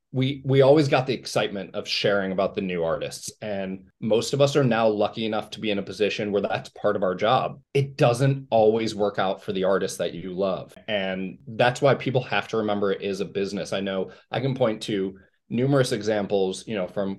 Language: English